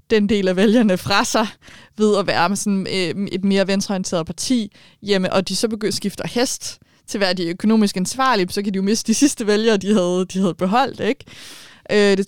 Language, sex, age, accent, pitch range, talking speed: Danish, female, 20-39, native, 175-210 Hz, 210 wpm